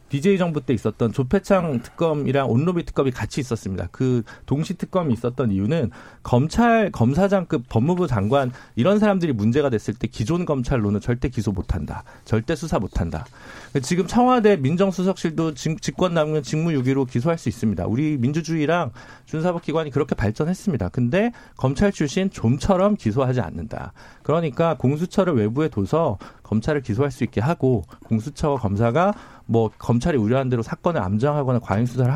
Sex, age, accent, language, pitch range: male, 40-59, native, Korean, 115-165 Hz